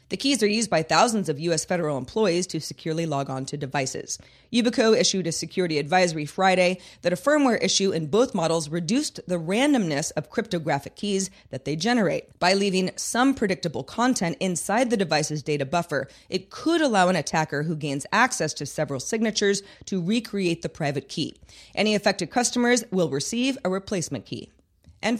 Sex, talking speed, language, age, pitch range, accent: female, 175 wpm, English, 30-49, 160-220 Hz, American